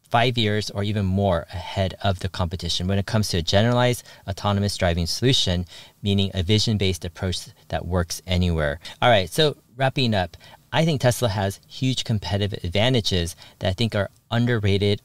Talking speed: 170 wpm